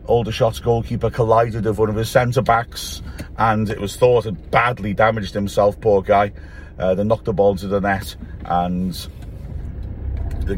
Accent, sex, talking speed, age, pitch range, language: British, male, 170 wpm, 40-59, 85-110 Hz, English